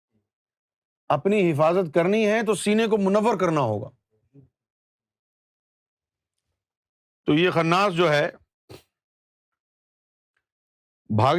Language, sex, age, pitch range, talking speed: Urdu, male, 50-69, 120-190 Hz, 85 wpm